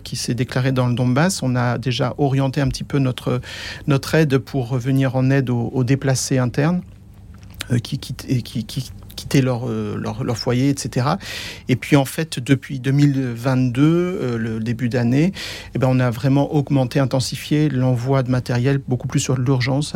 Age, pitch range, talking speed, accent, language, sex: 50-69, 120-135 Hz, 175 wpm, French, French, male